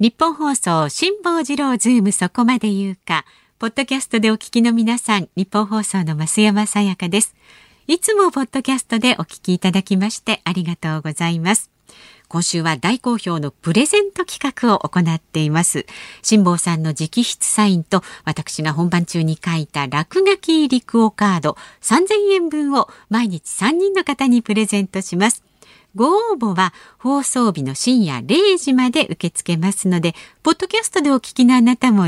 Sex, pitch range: female, 175-265 Hz